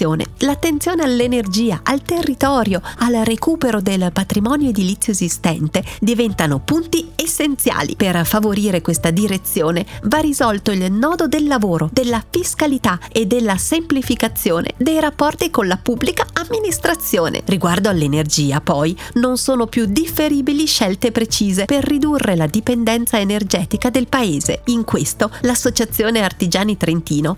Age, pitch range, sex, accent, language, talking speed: 40-59, 190-285 Hz, female, native, Italian, 120 wpm